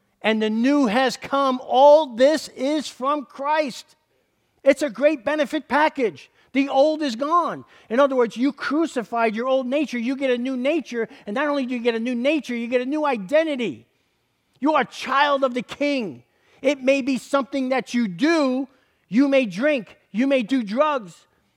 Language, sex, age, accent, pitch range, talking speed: English, male, 50-69, American, 240-280 Hz, 185 wpm